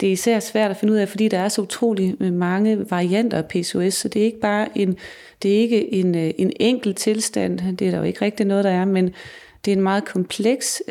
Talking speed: 220 wpm